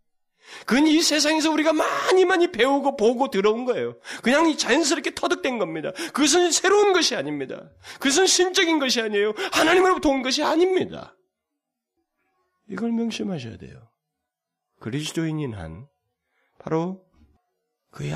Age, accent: 30-49, native